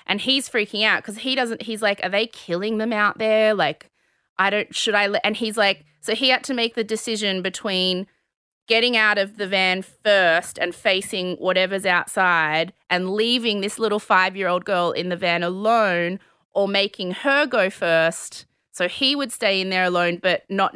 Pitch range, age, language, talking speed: 175-220 Hz, 20-39, English, 190 wpm